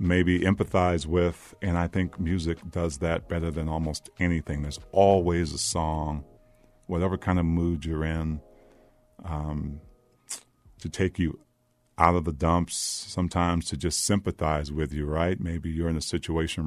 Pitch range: 80-95 Hz